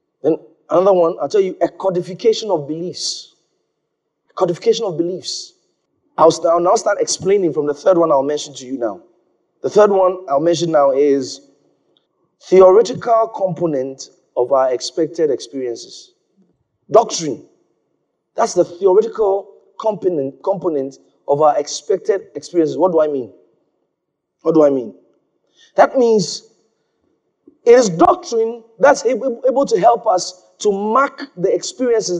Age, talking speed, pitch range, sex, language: 30-49, 135 wpm, 160-225 Hz, male, English